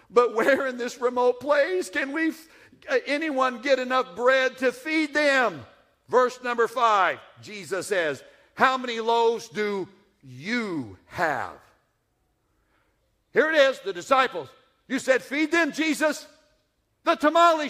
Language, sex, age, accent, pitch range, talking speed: English, male, 60-79, American, 200-290 Hz, 130 wpm